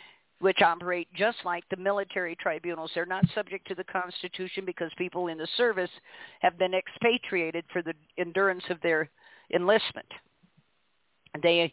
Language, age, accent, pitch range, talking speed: English, 50-69, American, 170-200 Hz, 145 wpm